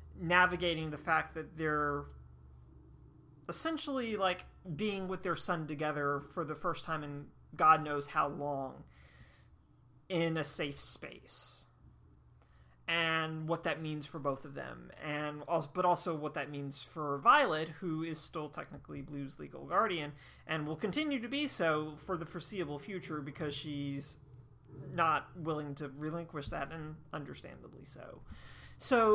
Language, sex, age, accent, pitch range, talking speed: English, male, 30-49, American, 145-185 Hz, 145 wpm